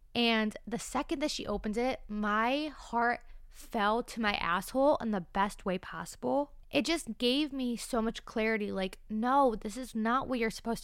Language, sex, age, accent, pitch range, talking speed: English, female, 20-39, American, 200-250 Hz, 185 wpm